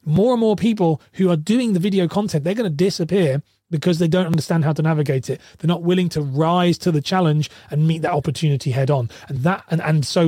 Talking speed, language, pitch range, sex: 240 wpm, English, 145-180 Hz, male